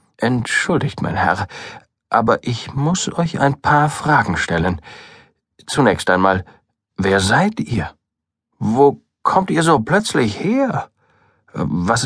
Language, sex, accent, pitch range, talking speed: German, male, German, 100-150 Hz, 115 wpm